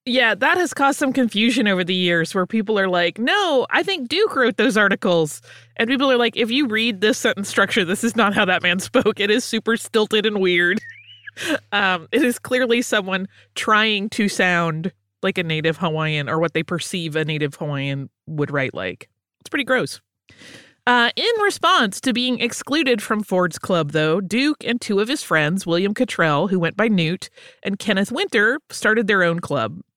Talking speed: 195 wpm